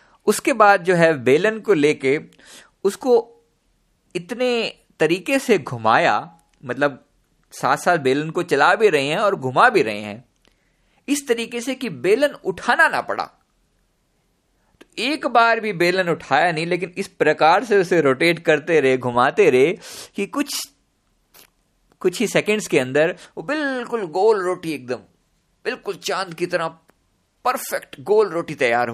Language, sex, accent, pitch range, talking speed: Hindi, male, native, 155-205 Hz, 145 wpm